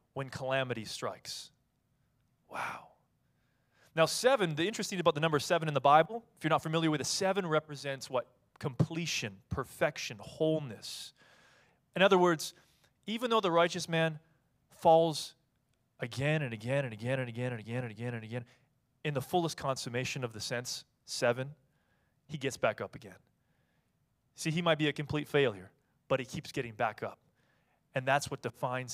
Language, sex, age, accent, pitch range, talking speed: English, male, 30-49, American, 130-170 Hz, 165 wpm